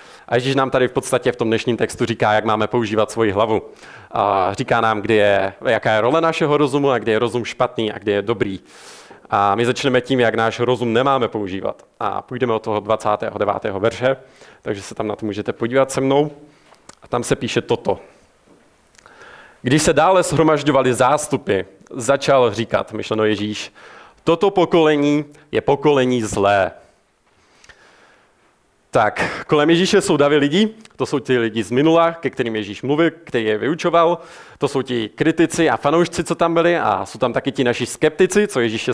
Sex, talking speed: male, 175 wpm